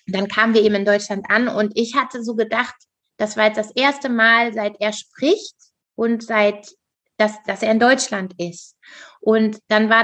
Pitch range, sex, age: 205-235 Hz, female, 20-39